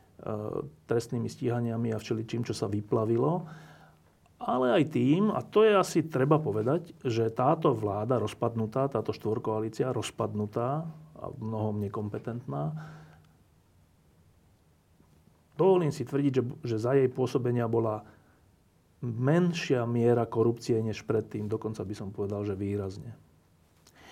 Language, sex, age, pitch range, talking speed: Slovak, male, 40-59, 105-135 Hz, 115 wpm